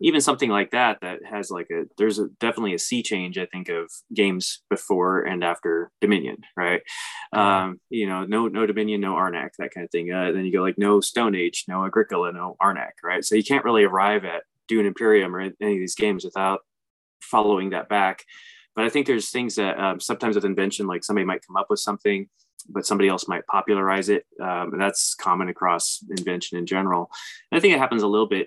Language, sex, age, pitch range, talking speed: English, male, 20-39, 95-110 Hz, 220 wpm